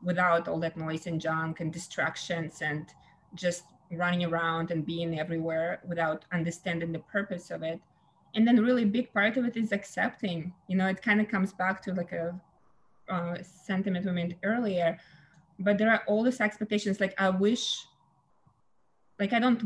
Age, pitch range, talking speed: 20-39, 170-200 Hz, 175 wpm